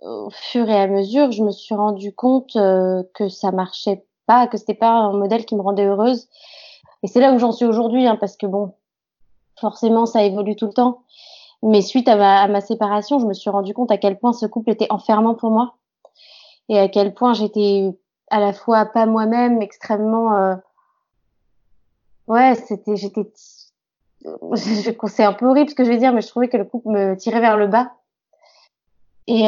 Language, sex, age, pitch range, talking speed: French, female, 20-39, 205-235 Hz, 205 wpm